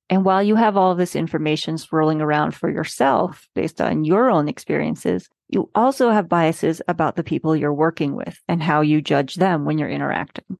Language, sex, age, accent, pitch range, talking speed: English, female, 30-49, American, 160-200 Hz, 195 wpm